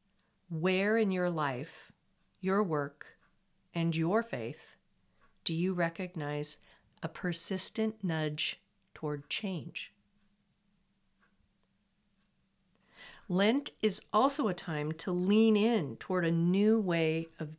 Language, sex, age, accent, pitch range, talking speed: English, female, 50-69, American, 160-195 Hz, 100 wpm